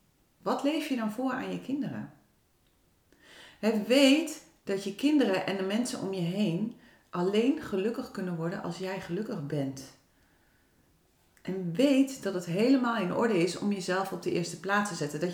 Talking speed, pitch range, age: 170 wpm, 185-250 Hz, 40-59